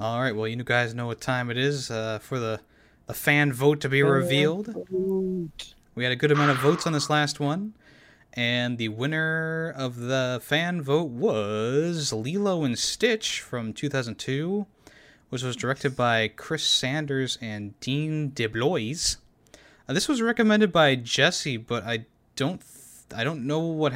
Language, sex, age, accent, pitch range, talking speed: English, male, 20-39, American, 120-155 Hz, 165 wpm